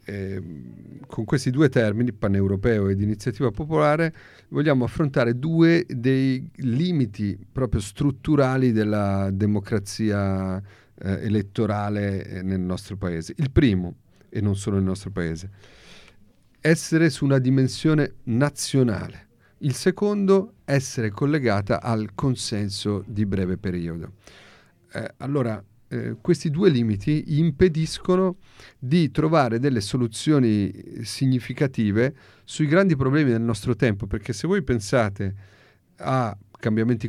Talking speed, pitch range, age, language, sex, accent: 110 wpm, 105-150 Hz, 40-59, Italian, male, native